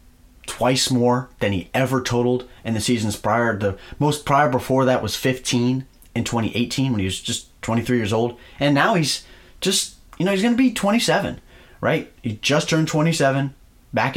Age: 30-49